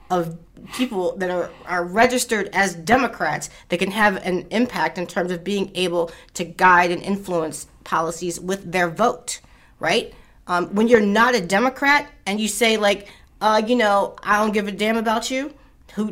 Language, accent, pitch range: English, American, 180-240 Hz